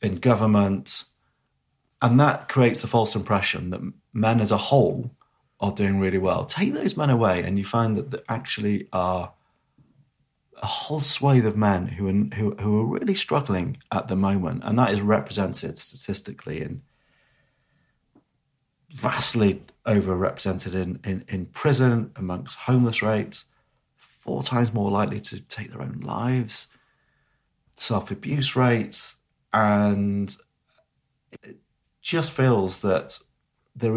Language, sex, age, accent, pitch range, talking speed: English, male, 30-49, British, 100-125 Hz, 130 wpm